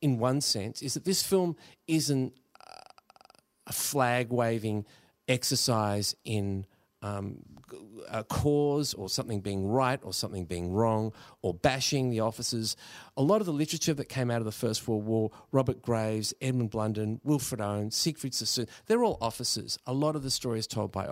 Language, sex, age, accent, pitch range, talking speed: English, male, 40-59, Australian, 100-130 Hz, 165 wpm